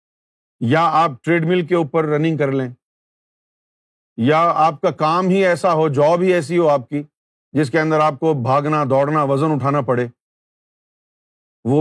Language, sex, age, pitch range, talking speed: Urdu, male, 50-69, 140-185 Hz, 165 wpm